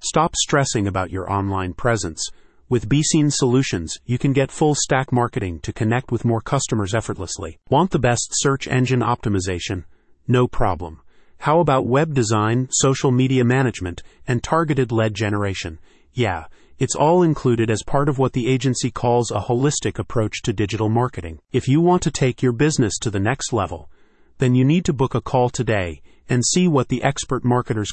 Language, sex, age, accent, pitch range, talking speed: English, male, 30-49, American, 110-135 Hz, 175 wpm